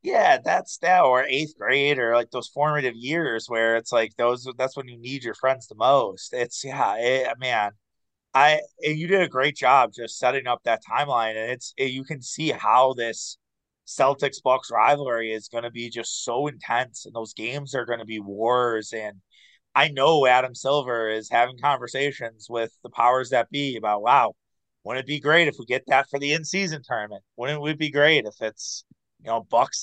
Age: 30-49